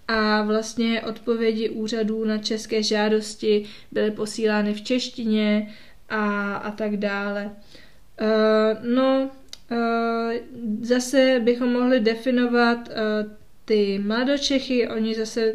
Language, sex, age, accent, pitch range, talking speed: Czech, female, 20-39, native, 210-235 Hz, 95 wpm